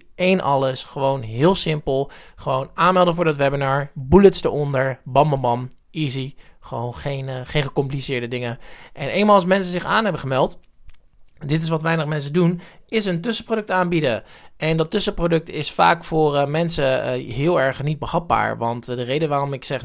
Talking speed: 180 wpm